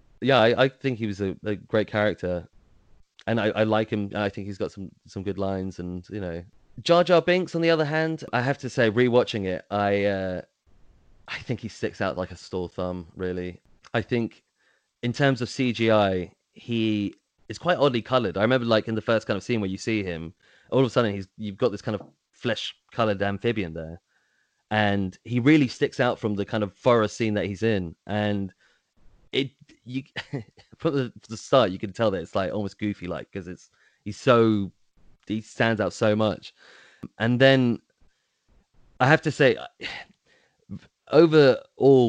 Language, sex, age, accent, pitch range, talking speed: English, male, 20-39, British, 100-125 Hz, 190 wpm